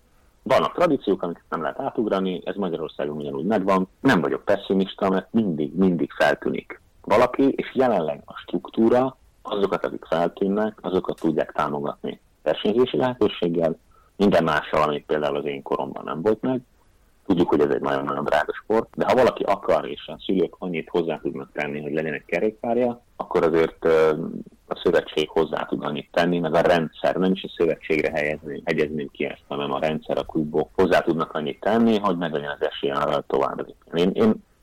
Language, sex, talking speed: Hungarian, male, 170 wpm